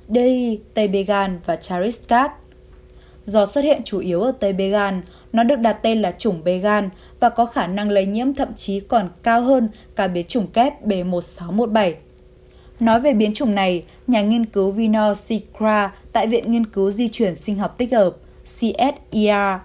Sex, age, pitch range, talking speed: female, 20-39, 190-235 Hz, 175 wpm